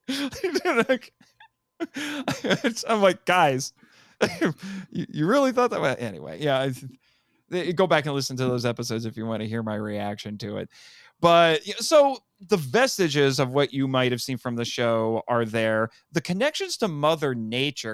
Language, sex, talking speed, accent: English, male, 155 wpm, American